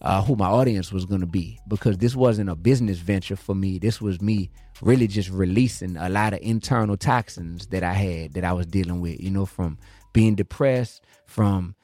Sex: male